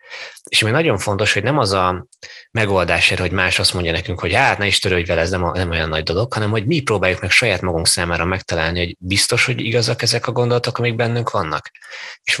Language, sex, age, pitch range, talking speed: Hungarian, male, 20-39, 90-110 Hz, 220 wpm